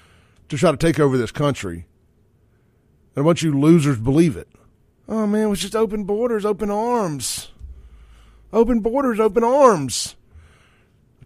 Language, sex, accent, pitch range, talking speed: English, male, American, 120-175 Hz, 140 wpm